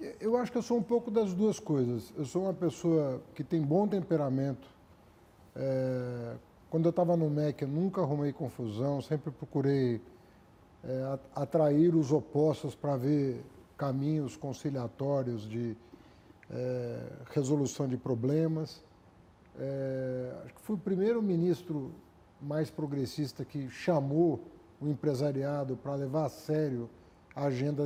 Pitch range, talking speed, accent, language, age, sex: 125-170 Hz, 125 wpm, Brazilian, Portuguese, 50-69, male